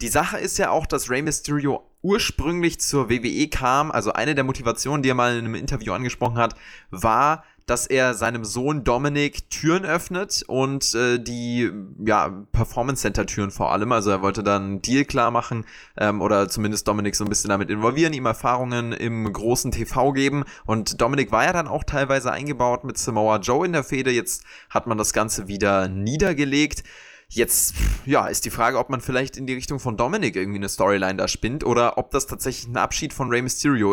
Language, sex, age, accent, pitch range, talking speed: German, male, 20-39, German, 110-140 Hz, 195 wpm